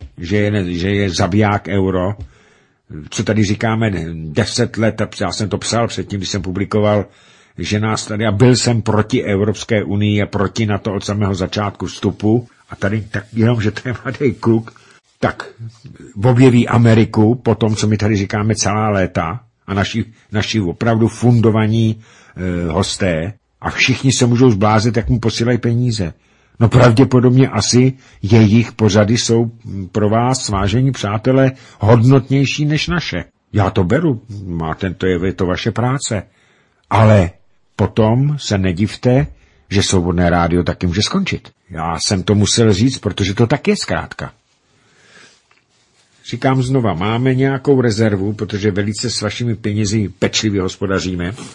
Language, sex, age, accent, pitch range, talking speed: Czech, male, 50-69, native, 100-120 Hz, 145 wpm